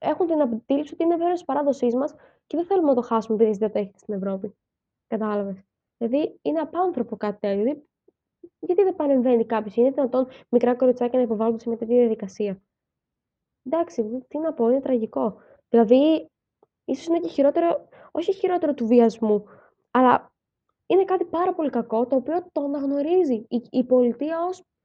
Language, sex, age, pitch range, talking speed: Greek, female, 20-39, 225-290 Hz, 175 wpm